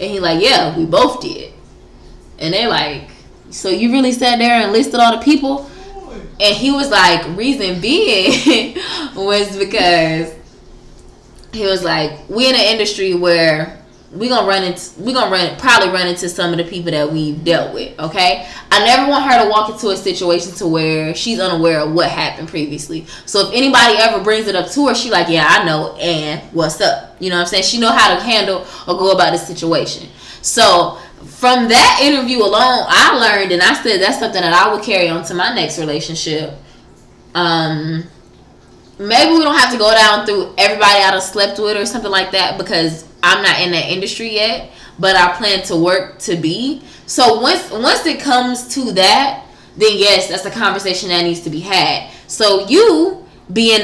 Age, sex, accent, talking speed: 20-39, female, American, 195 wpm